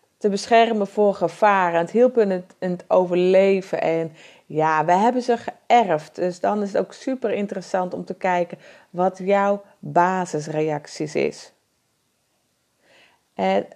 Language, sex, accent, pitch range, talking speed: Dutch, female, Dutch, 165-200 Hz, 135 wpm